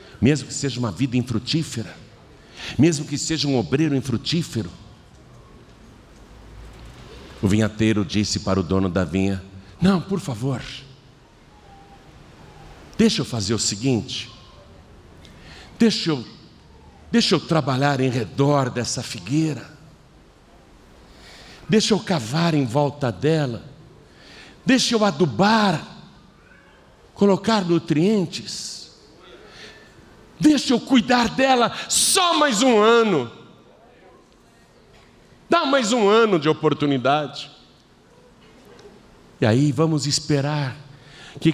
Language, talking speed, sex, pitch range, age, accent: Portuguese, 95 wpm, male, 130-215 Hz, 60-79, Brazilian